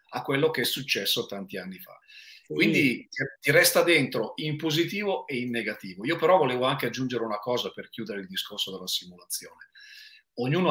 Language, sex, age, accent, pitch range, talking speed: Italian, male, 40-59, native, 105-140 Hz, 175 wpm